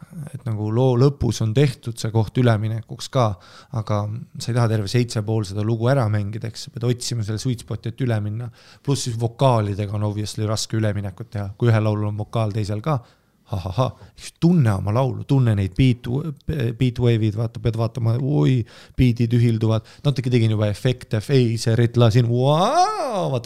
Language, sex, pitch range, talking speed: English, male, 110-135 Hz, 170 wpm